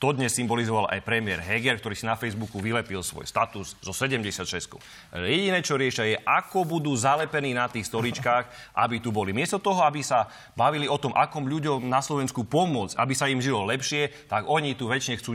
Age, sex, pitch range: 30-49, male, 110-140 Hz